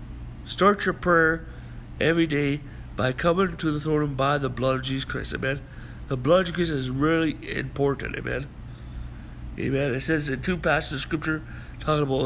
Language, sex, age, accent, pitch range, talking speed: English, male, 60-79, American, 125-165 Hz, 170 wpm